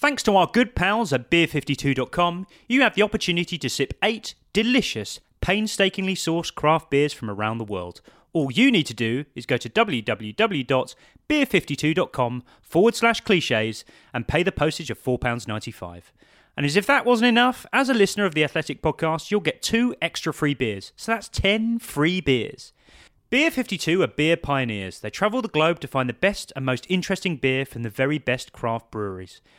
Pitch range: 130-195 Hz